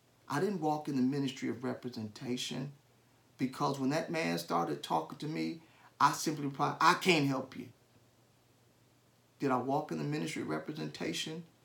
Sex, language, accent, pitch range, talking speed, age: male, English, American, 125-155 Hz, 160 wpm, 40-59